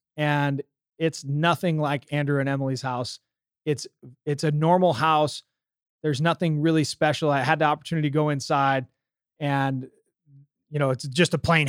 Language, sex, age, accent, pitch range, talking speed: English, male, 30-49, American, 135-165 Hz, 160 wpm